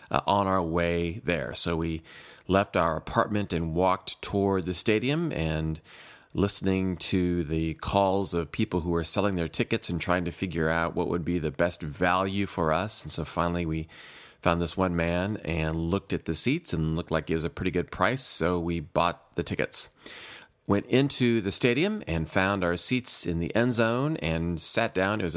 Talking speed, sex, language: 200 wpm, male, English